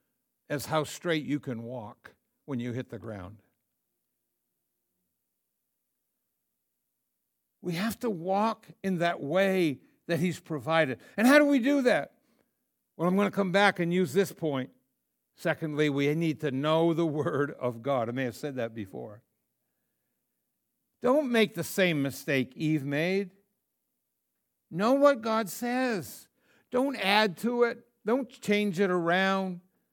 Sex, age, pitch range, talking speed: male, 60-79, 155-225 Hz, 140 wpm